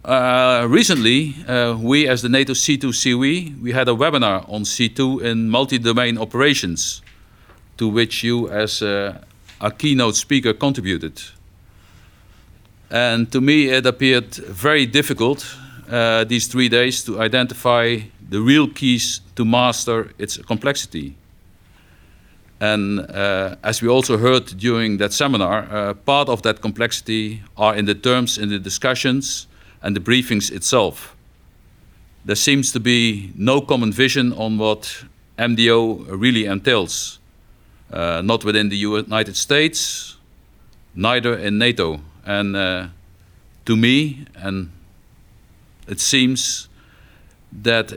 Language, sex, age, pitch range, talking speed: English, male, 50-69, 100-125 Hz, 125 wpm